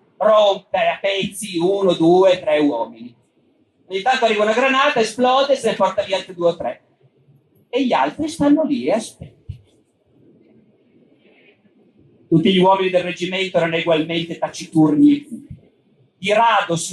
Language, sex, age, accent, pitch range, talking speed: Italian, male, 40-59, native, 190-240 Hz, 140 wpm